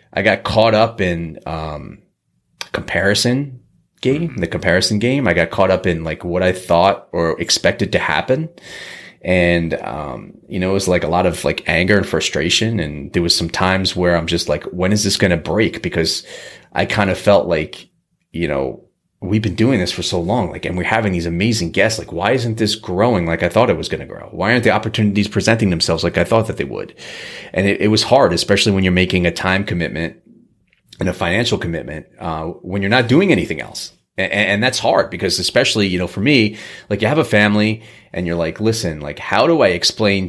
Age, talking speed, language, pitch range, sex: 30-49, 220 wpm, English, 85-110 Hz, male